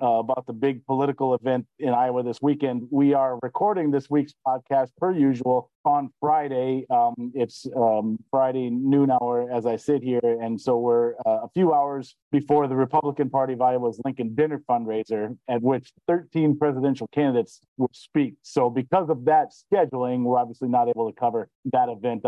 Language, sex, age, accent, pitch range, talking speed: English, male, 40-59, American, 120-145 Hz, 180 wpm